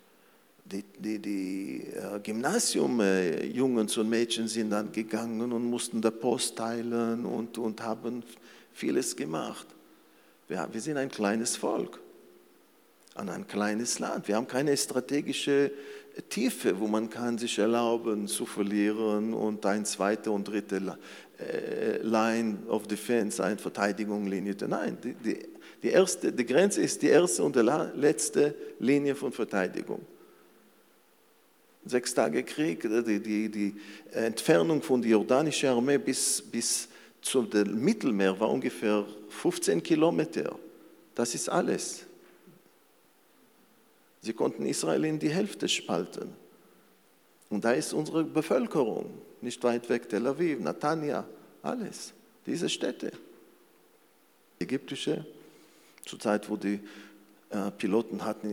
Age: 50-69